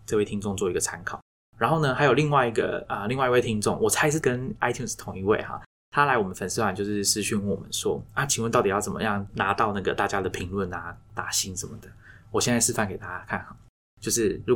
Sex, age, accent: male, 20-39, native